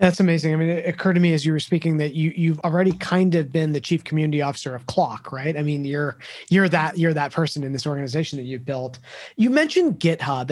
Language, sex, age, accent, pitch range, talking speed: English, male, 30-49, American, 150-185 Hz, 245 wpm